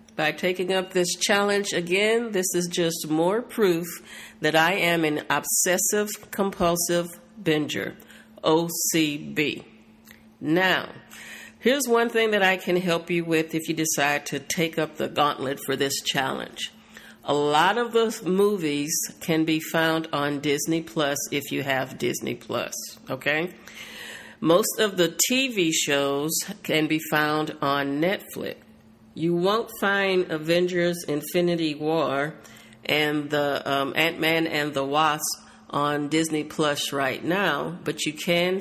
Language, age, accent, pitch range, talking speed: English, 50-69, American, 150-180 Hz, 135 wpm